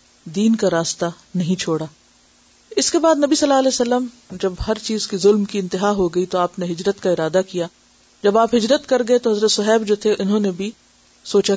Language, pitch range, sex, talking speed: Urdu, 175-225 Hz, female, 225 wpm